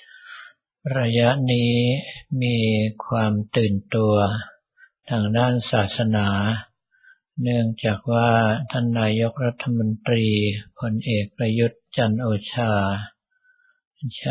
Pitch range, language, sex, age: 110-125 Hz, Thai, male, 60-79